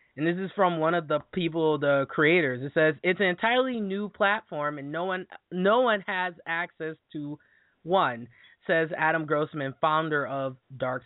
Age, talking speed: 20-39, 175 wpm